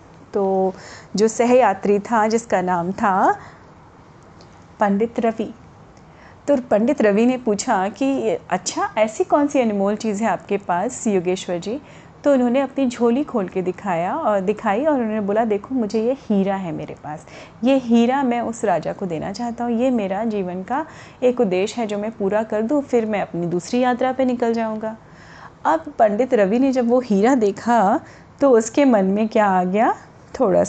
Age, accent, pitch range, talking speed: 30-49, native, 205-250 Hz, 175 wpm